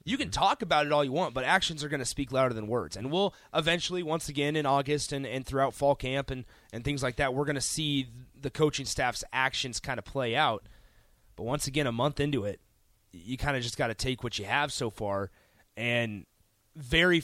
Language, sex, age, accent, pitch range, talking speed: English, male, 30-49, American, 120-155 Hz, 235 wpm